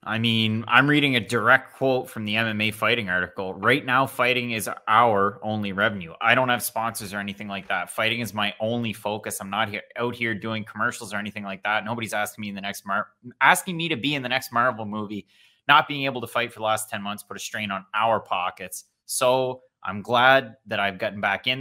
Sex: male